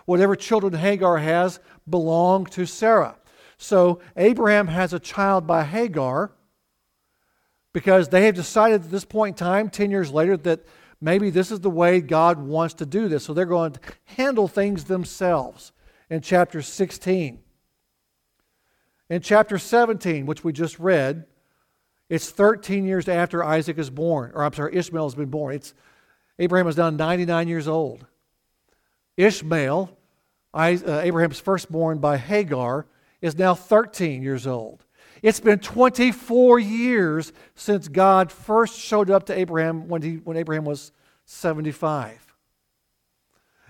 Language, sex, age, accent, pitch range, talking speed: English, male, 60-79, American, 160-200 Hz, 140 wpm